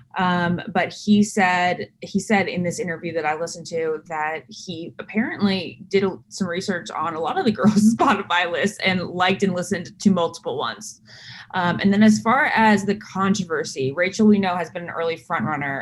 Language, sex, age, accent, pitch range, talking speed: English, female, 20-39, American, 165-205 Hz, 195 wpm